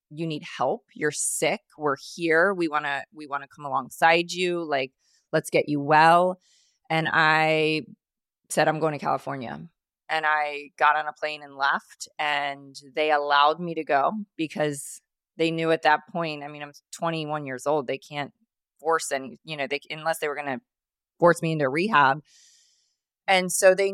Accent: American